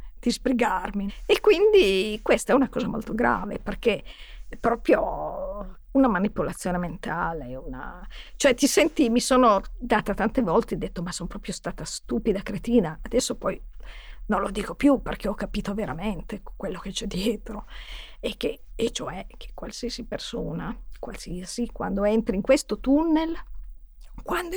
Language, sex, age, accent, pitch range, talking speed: Italian, female, 50-69, native, 195-250 Hz, 150 wpm